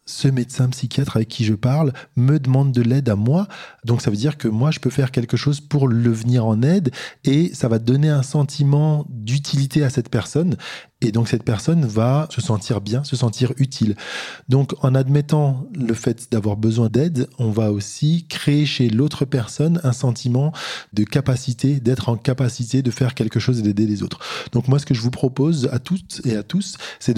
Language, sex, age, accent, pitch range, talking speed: French, male, 20-39, French, 120-145 Hz, 205 wpm